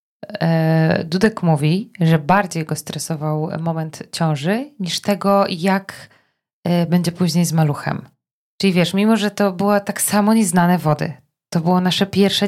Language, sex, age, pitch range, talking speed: Polish, female, 20-39, 165-210 Hz, 140 wpm